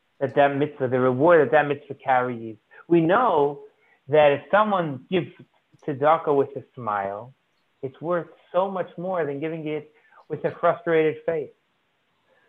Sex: male